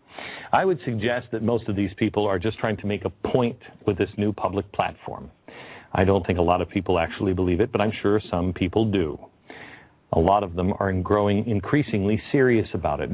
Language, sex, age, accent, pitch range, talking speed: English, male, 50-69, American, 95-115 Hz, 210 wpm